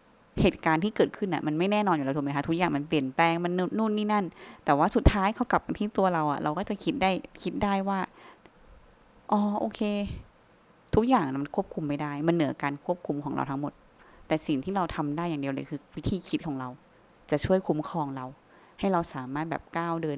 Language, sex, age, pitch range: Thai, female, 20-39, 150-195 Hz